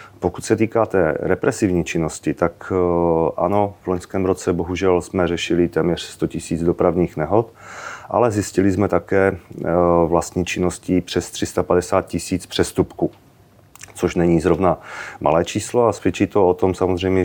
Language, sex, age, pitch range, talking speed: Czech, male, 30-49, 85-95 Hz, 140 wpm